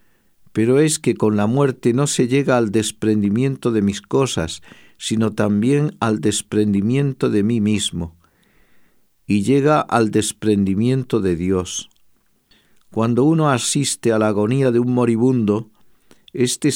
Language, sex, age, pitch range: Spanish, male, 50-69, 105-130 Hz